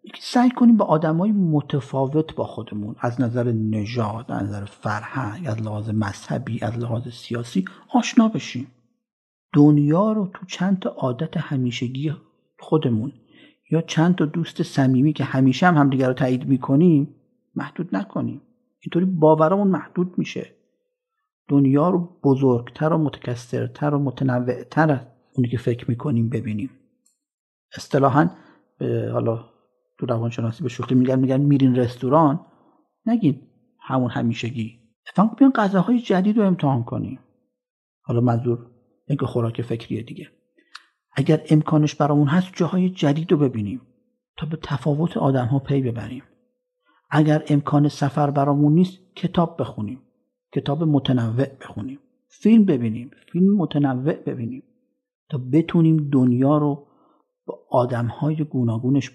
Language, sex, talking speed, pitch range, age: English, male, 125 wpm, 125-175 Hz, 50-69